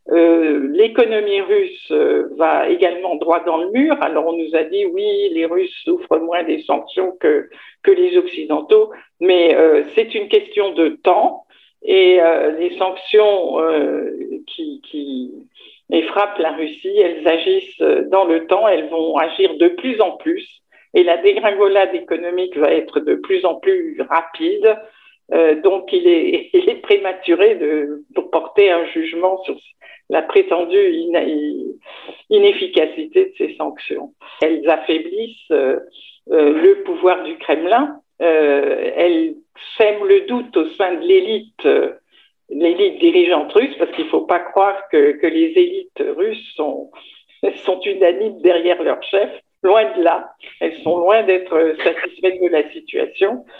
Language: French